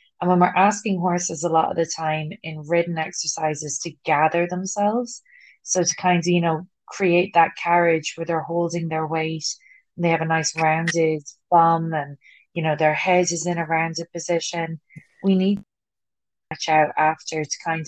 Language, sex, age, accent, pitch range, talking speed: English, female, 20-39, Irish, 160-180 Hz, 185 wpm